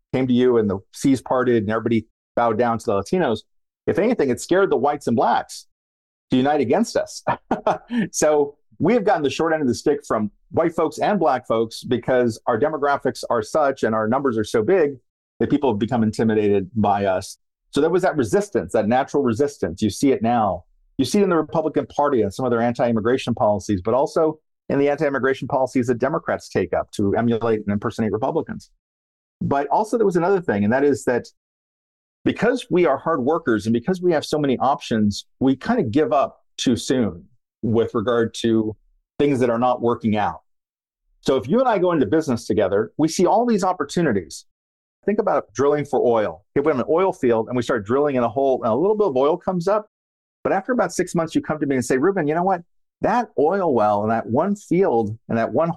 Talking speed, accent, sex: 215 wpm, American, male